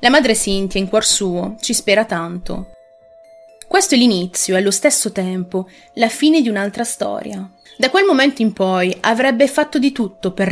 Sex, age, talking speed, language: female, 30-49, 175 wpm, Italian